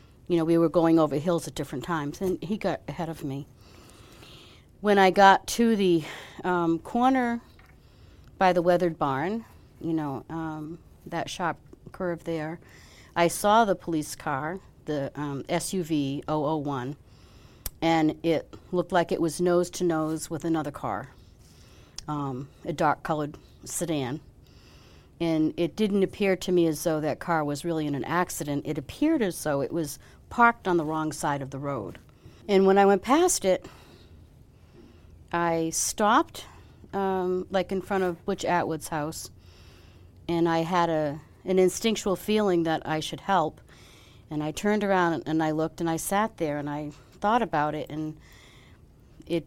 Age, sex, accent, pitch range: 60-79, female, American, 150-180 Hz